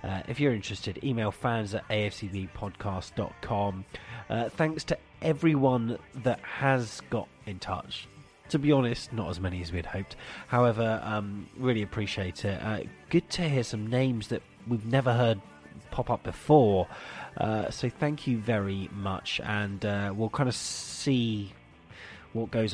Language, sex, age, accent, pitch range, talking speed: English, male, 30-49, British, 100-125 Hz, 150 wpm